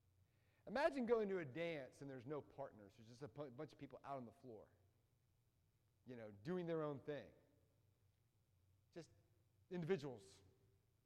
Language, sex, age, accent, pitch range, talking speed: English, male, 40-59, American, 110-160 Hz, 150 wpm